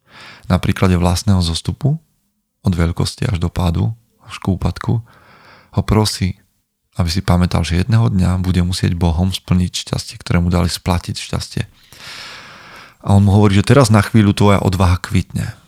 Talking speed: 155 wpm